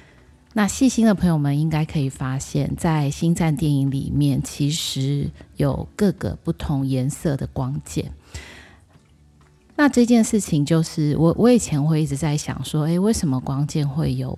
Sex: female